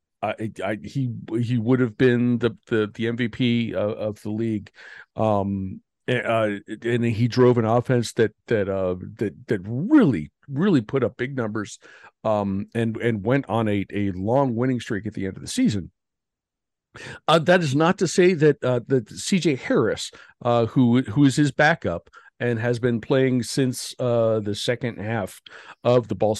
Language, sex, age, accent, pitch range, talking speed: English, male, 50-69, American, 115-145 Hz, 180 wpm